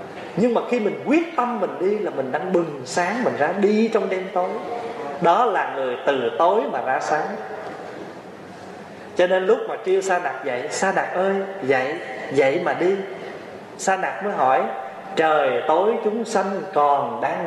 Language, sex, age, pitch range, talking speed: Vietnamese, male, 20-39, 180-245 Hz, 180 wpm